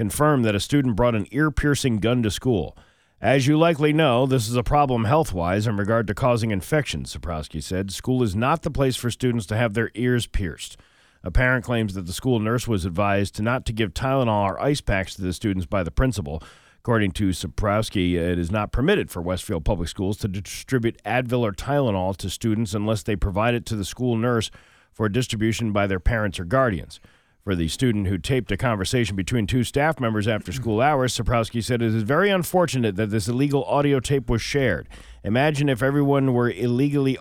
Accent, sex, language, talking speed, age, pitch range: American, male, English, 200 wpm, 40-59, 100-130 Hz